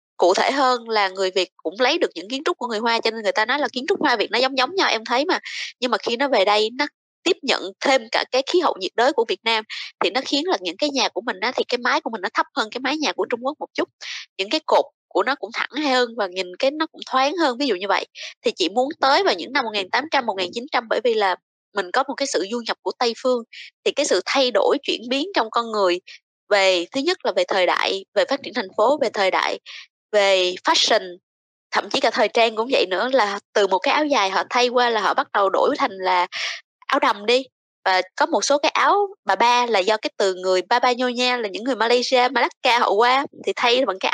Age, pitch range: 20-39, 210-285 Hz